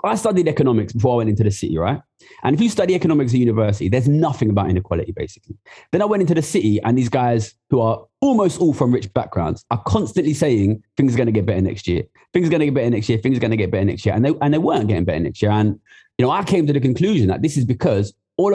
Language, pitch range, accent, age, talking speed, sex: English, 110-165 Hz, British, 20-39, 280 wpm, male